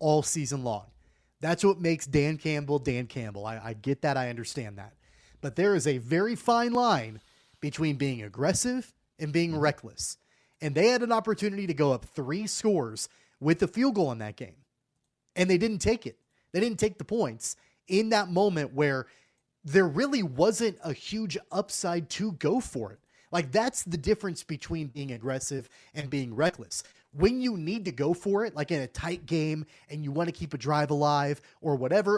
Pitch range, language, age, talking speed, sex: 140-205 Hz, English, 30-49, 190 wpm, male